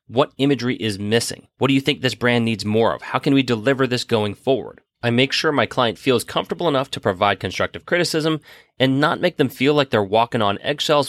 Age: 30-49